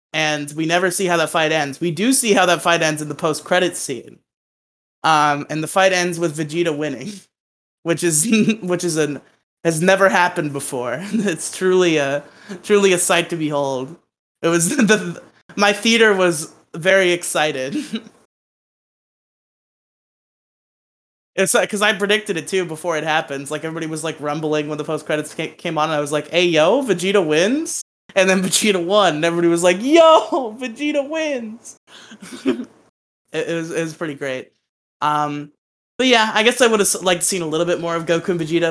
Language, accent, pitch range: English, American, 155-200 Hz